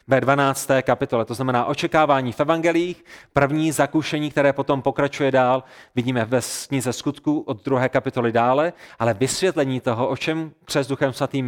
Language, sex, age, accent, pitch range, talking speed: Czech, male, 30-49, native, 135-175 Hz, 155 wpm